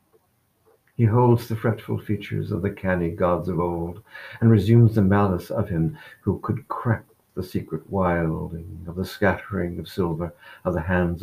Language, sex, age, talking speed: English, male, 60-79, 165 wpm